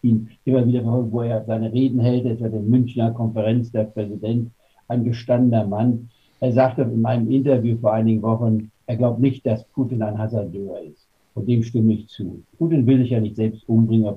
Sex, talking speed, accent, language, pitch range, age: male, 190 wpm, German, German, 105-125 Hz, 60-79